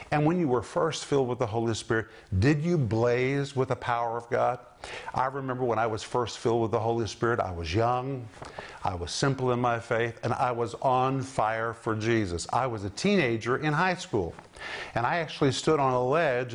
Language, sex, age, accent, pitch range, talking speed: English, male, 50-69, American, 115-150 Hz, 215 wpm